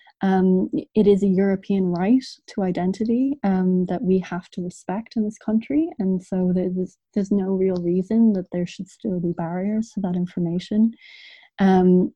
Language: English